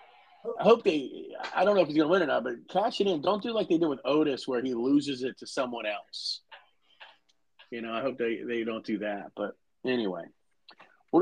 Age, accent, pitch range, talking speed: 30-49, American, 125-180 Hz, 230 wpm